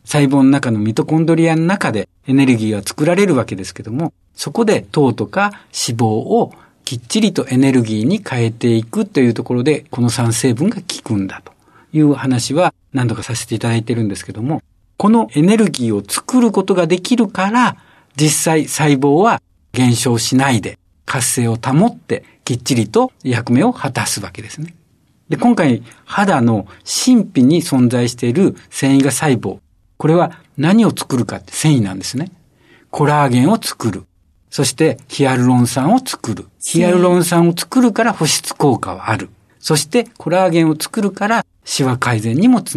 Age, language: 60-79, Japanese